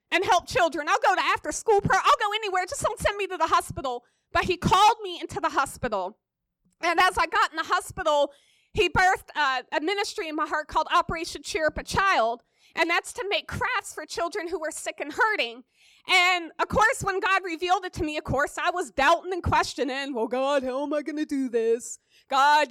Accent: American